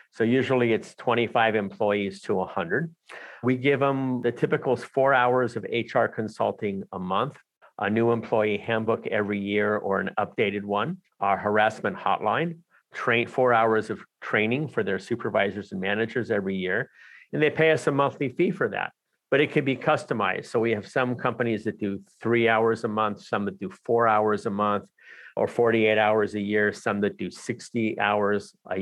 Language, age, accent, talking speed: English, 50-69, American, 180 wpm